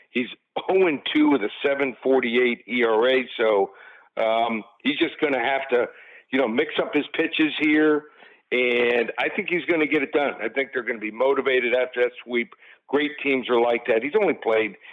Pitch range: 125-155 Hz